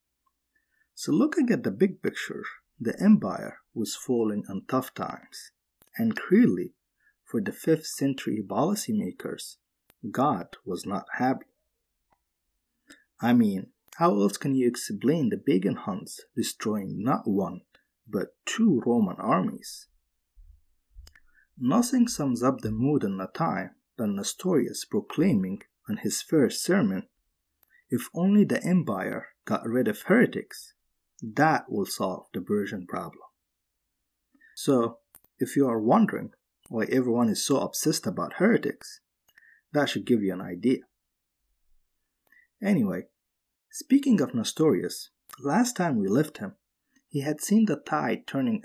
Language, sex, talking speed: English, male, 125 wpm